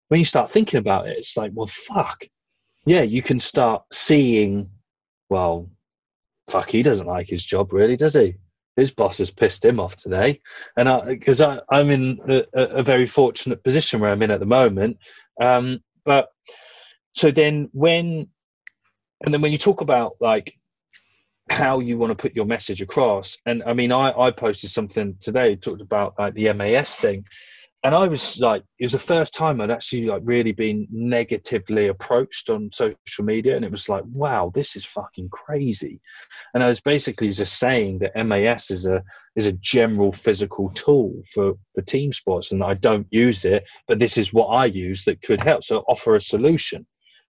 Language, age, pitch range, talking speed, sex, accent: French, 30-49, 100-135 Hz, 185 wpm, male, British